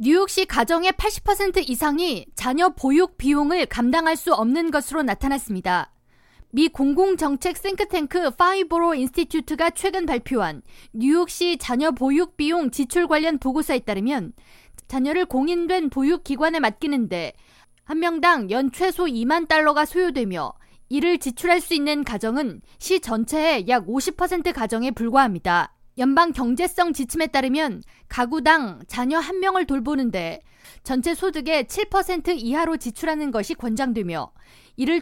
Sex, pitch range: female, 255-340 Hz